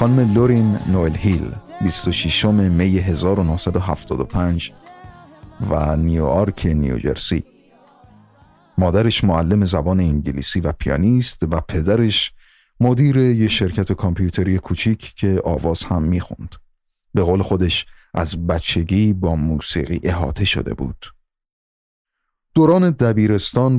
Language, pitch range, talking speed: Persian, 80-105 Hz, 105 wpm